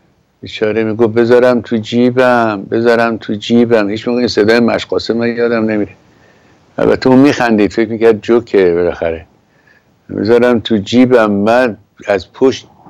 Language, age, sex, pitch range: Persian, 60-79, male, 100-125 Hz